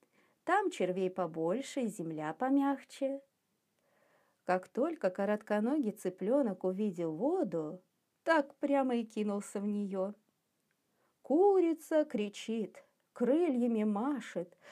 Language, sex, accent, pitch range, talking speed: Russian, female, native, 185-275 Hz, 90 wpm